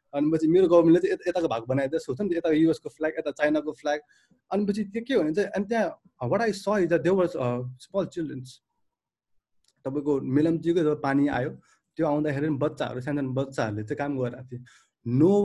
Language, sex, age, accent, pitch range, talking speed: Kannada, male, 30-49, native, 135-185 Hz, 70 wpm